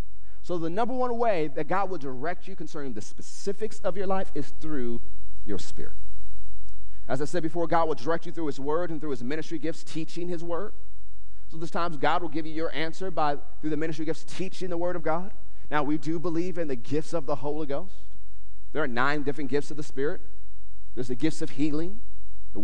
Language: English